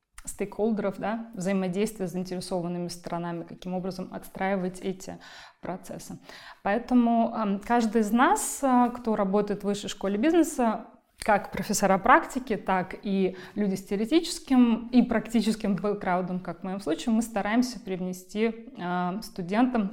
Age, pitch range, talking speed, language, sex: 20-39, 185-230 Hz, 120 wpm, Russian, female